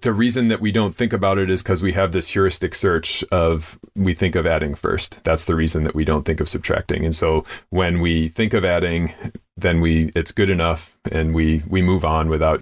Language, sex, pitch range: English, male, 80-95 Hz